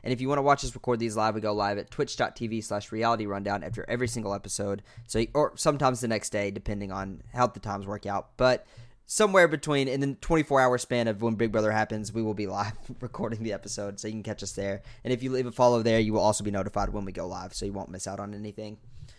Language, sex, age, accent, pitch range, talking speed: English, male, 10-29, American, 105-130 Hz, 255 wpm